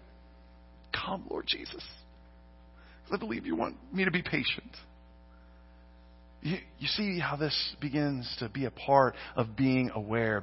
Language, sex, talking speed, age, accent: English, male, 145 wpm, 40-59, American